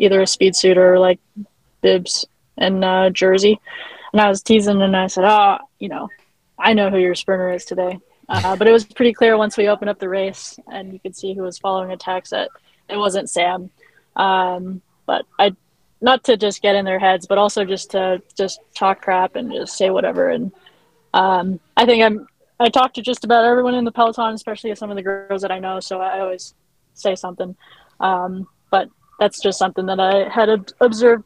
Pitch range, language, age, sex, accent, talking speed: 185-220 Hz, English, 20-39, female, American, 210 wpm